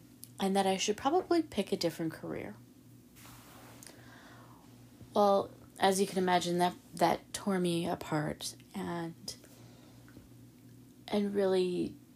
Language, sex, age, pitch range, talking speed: English, female, 30-49, 150-195 Hz, 110 wpm